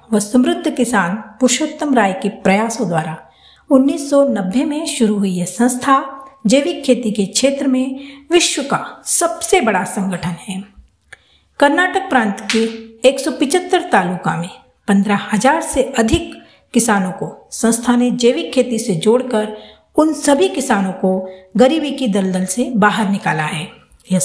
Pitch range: 200-275 Hz